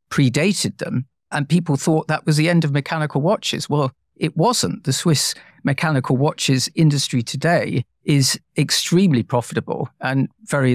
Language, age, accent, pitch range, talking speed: English, 50-69, British, 120-150 Hz, 145 wpm